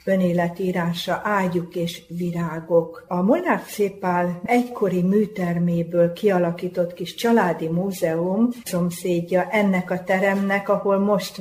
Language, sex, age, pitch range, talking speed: Hungarian, female, 50-69, 175-210 Hz, 100 wpm